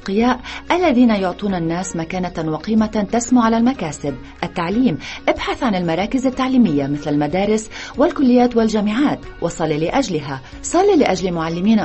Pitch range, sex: 165-245 Hz, female